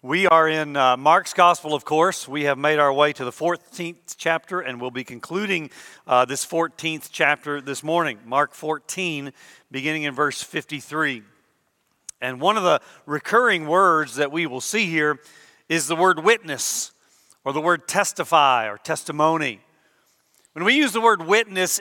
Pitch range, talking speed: 155-195 Hz, 165 wpm